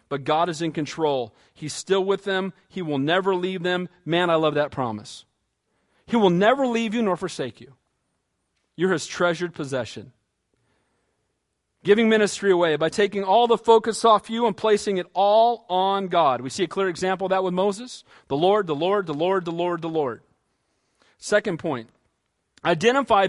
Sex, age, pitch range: male, 40-59, 160-225 Hz